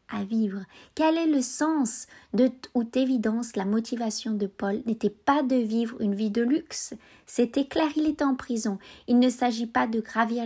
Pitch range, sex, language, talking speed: 210-255 Hz, female, French, 190 wpm